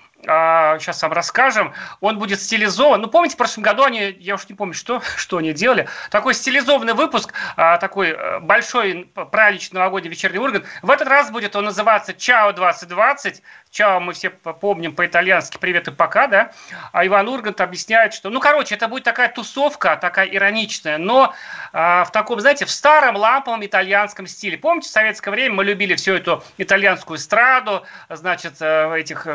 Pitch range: 170-220 Hz